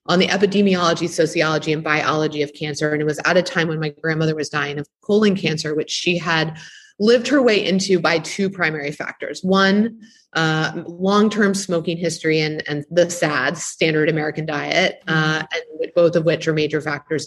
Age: 30-49